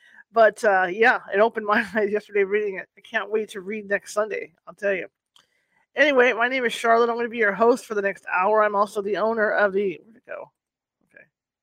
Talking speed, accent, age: 235 wpm, American, 40-59